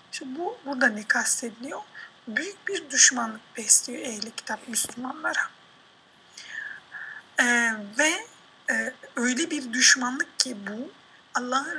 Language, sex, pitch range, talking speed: Turkish, female, 230-285 Hz, 105 wpm